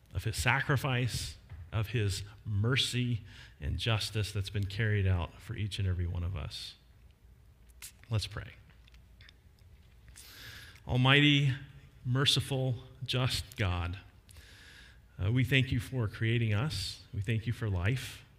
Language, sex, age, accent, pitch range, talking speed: English, male, 40-59, American, 100-130 Hz, 120 wpm